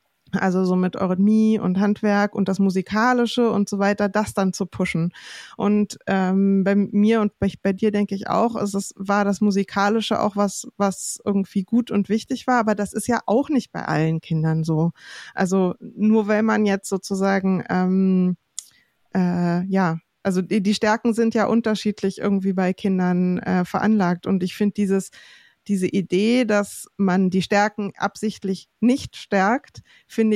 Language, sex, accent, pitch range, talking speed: German, female, German, 190-215 Hz, 170 wpm